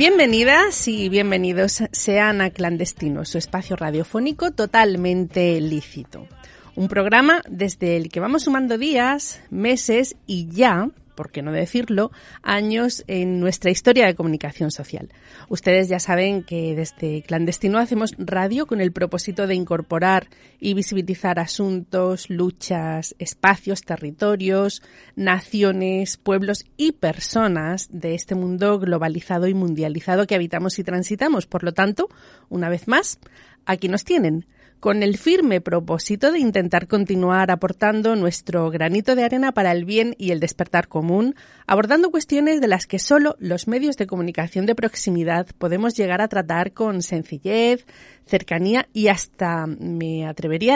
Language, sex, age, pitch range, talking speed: Spanish, female, 30-49, 175-225 Hz, 140 wpm